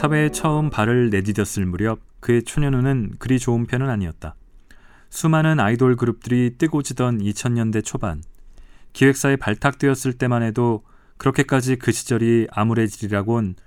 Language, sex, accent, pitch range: Korean, male, native, 105-135 Hz